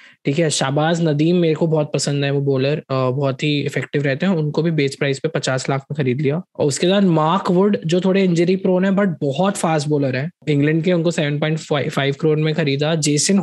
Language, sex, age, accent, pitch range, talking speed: Hindi, male, 20-39, native, 145-175 Hz, 220 wpm